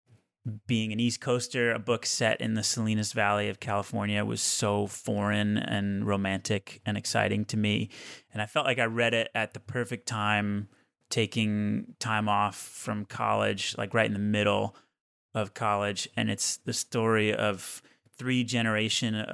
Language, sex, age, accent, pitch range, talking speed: English, male, 30-49, American, 105-115 Hz, 160 wpm